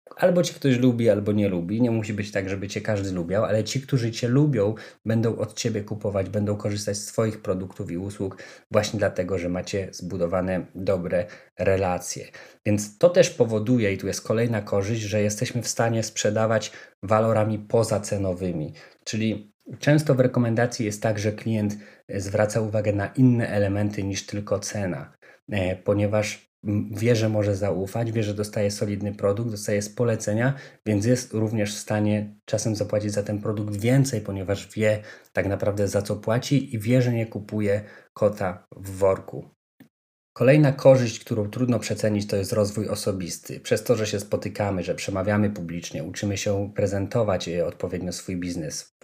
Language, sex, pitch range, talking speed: Polish, male, 95-110 Hz, 160 wpm